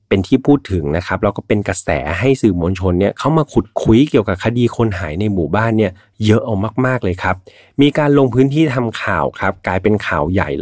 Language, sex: Thai, male